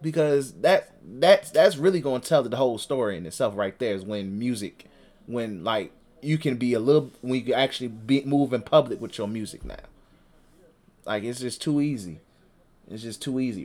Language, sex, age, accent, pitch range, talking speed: English, male, 20-39, American, 105-130 Hz, 195 wpm